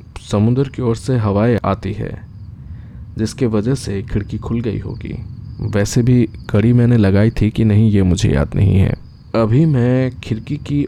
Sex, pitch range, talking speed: male, 100-120 Hz, 170 wpm